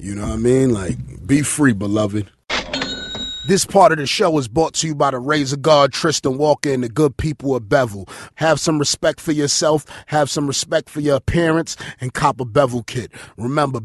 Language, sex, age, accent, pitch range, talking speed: English, male, 30-49, American, 130-160 Hz, 205 wpm